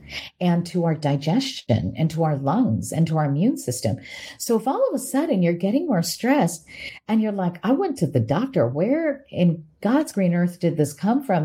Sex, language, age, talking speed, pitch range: female, English, 40-59, 210 wpm, 140-190 Hz